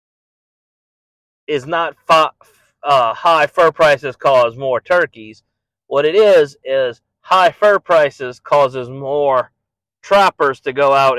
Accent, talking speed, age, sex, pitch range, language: American, 120 wpm, 30-49, male, 115-180 Hz, English